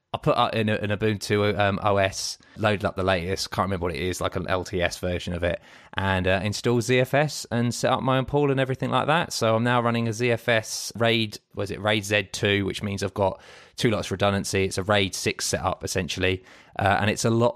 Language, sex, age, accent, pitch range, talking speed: English, male, 20-39, British, 95-115 Hz, 230 wpm